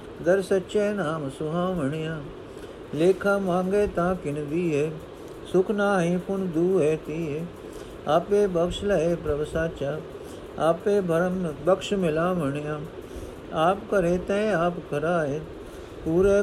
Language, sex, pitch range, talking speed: Punjabi, male, 140-180 Hz, 110 wpm